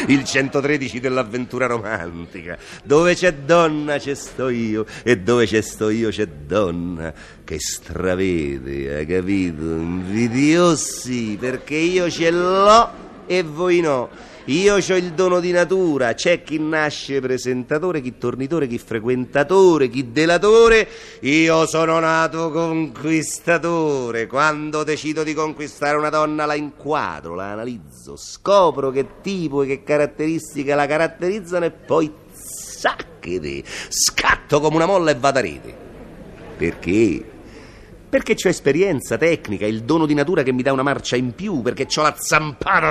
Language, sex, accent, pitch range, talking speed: Italian, male, native, 125-180 Hz, 135 wpm